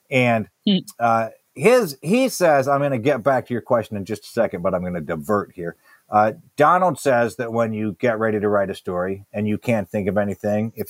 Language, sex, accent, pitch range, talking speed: English, male, American, 100-125 Hz, 230 wpm